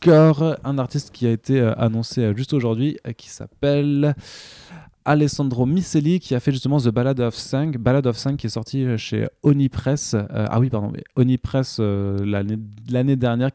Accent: French